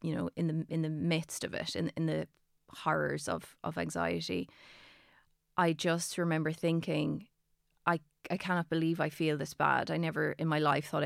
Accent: Irish